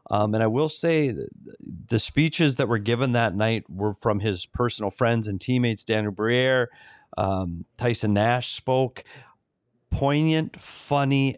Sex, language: male, English